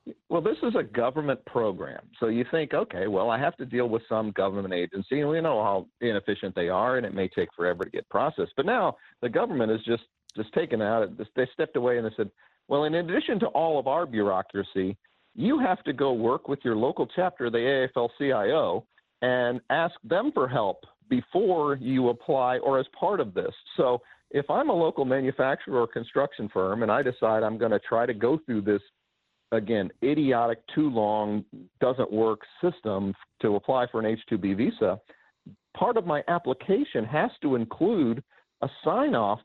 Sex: male